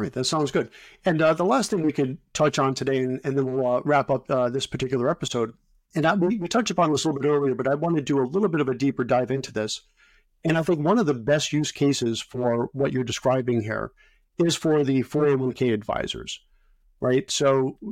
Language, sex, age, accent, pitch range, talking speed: English, male, 50-69, American, 130-155 Hz, 235 wpm